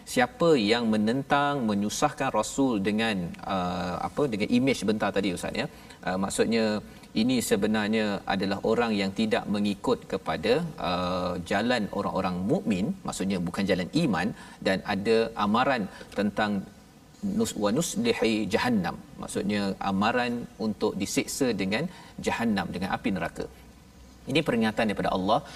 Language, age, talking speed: Malayalam, 40-59, 125 wpm